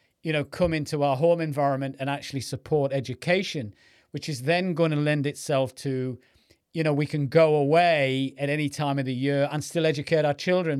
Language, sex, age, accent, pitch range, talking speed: English, male, 40-59, British, 140-170 Hz, 200 wpm